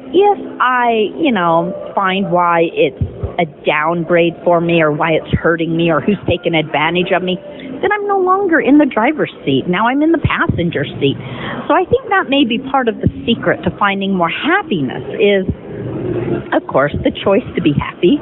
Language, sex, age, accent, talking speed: English, female, 40-59, American, 190 wpm